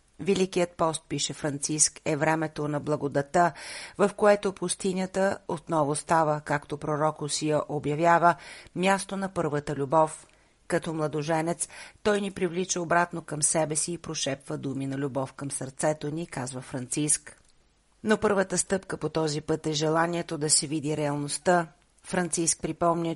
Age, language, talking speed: 40-59, Bulgarian, 140 wpm